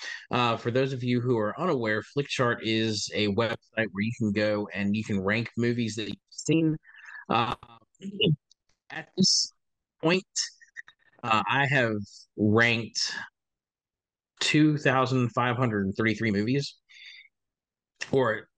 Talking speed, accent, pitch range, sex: 125 wpm, American, 110-145 Hz, male